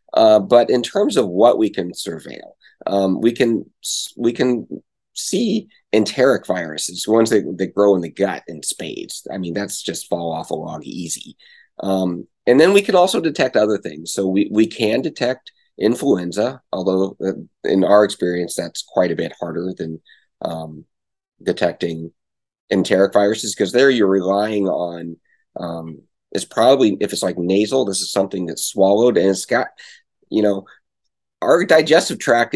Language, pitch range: English, 90-115 Hz